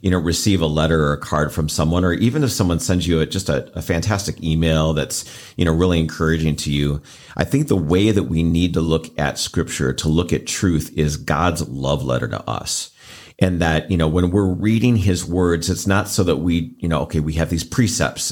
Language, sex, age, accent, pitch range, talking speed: English, male, 40-59, American, 80-95 Hz, 230 wpm